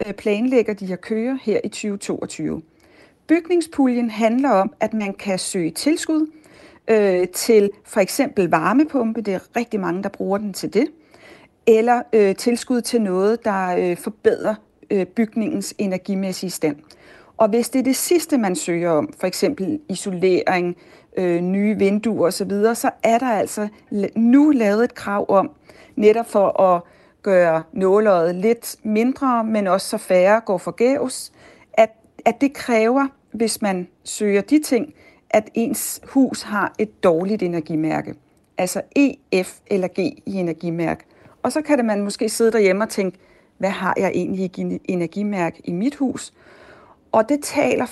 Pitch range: 190-240 Hz